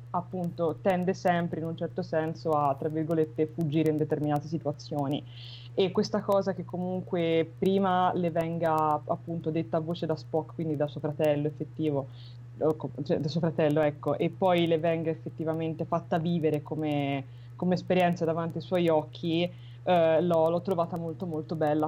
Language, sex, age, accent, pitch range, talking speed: Italian, female, 20-39, native, 150-175 Hz, 160 wpm